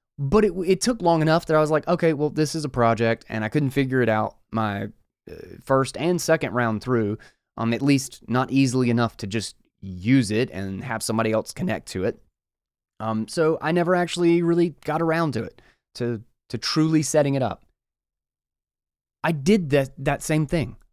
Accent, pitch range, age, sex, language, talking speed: American, 115-155 Hz, 20-39, male, English, 195 wpm